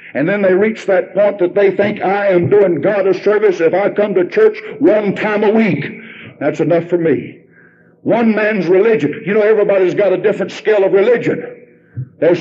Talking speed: 200 wpm